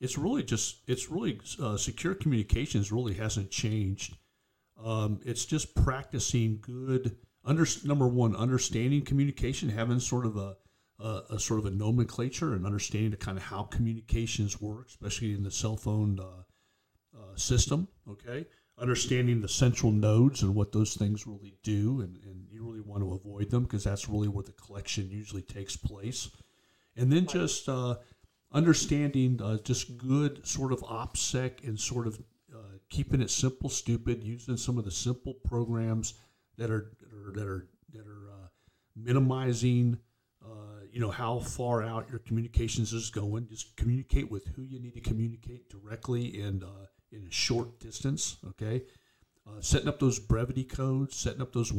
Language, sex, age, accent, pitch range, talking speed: English, male, 50-69, American, 105-125 Hz, 170 wpm